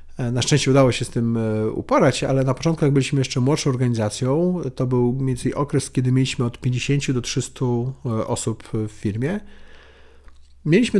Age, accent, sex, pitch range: 40-59, native, male, 110-155 Hz